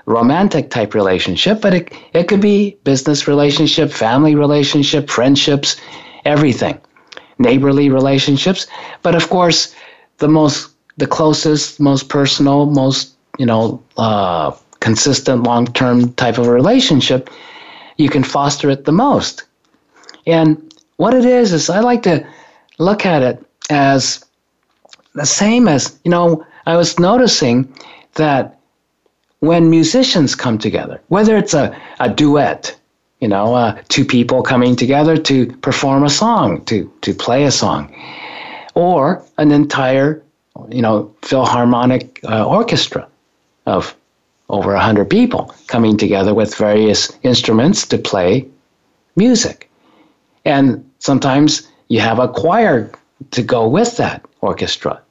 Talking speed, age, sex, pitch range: 130 wpm, 50-69, male, 130-165 Hz